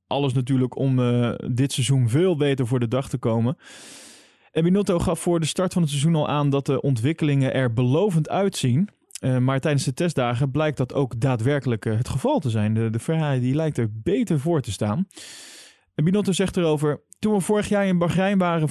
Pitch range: 120-155 Hz